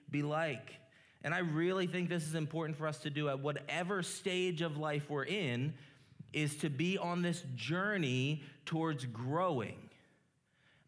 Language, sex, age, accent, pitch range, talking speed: English, male, 30-49, American, 150-180 Hz, 160 wpm